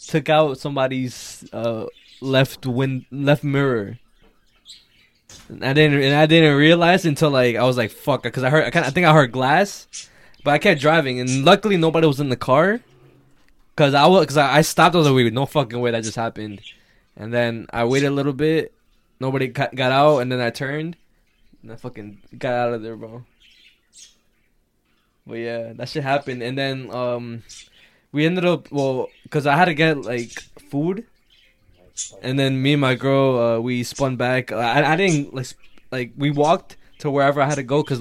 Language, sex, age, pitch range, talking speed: English, male, 10-29, 120-150 Hz, 195 wpm